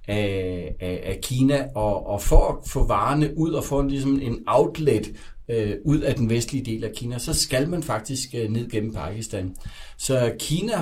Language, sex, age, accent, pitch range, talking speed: Danish, male, 60-79, native, 105-135 Hz, 170 wpm